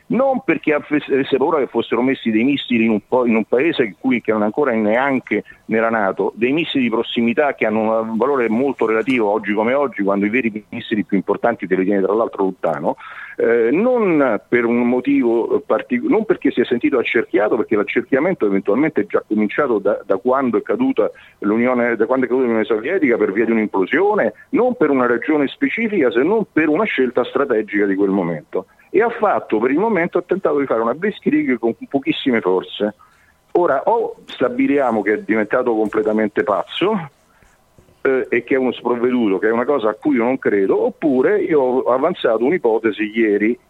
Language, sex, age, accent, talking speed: Italian, male, 40-59, native, 190 wpm